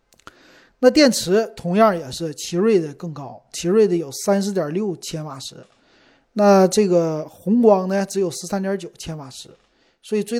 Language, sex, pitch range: Chinese, male, 155-200 Hz